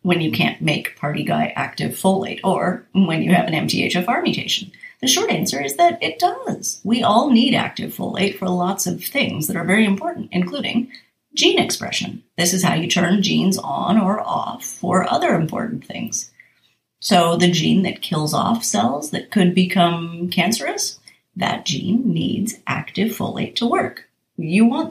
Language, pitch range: English, 185-240 Hz